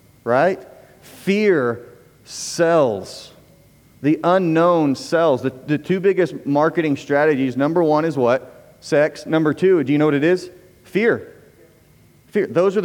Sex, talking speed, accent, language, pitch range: male, 135 wpm, American, English, 125-155 Hz